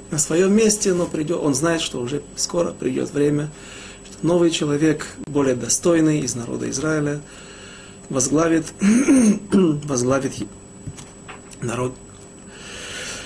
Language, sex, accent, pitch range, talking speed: Russian, male, native, 120-160 Hz, 100 wpm